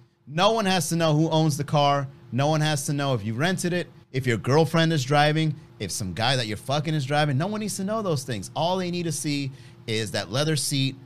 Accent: American